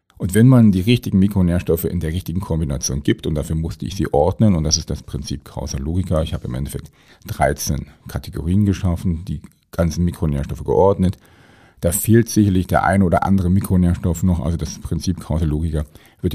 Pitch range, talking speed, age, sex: 80-100 Hz, 175 wpm, 40-59, male